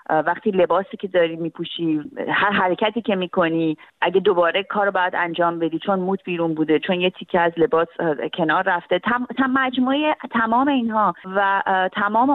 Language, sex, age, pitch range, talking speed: Persian, female, 30-49, 160-215 Hz, 165 wpm